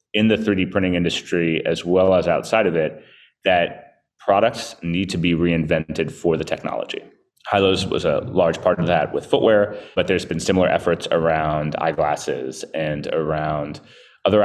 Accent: American